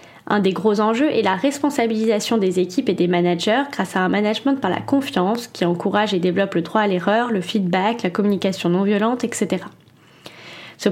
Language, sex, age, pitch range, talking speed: French, female, 10-29, 190-235 Hz, 185 wpm